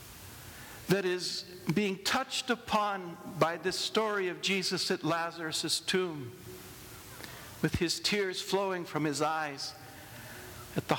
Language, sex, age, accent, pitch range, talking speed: English, male, 60-79, American, 120-200 Hz, 120 wpm